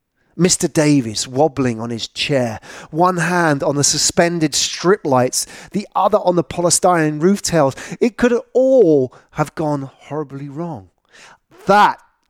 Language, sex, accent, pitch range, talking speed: English, male, British, 125-170 Hz, 130 wpm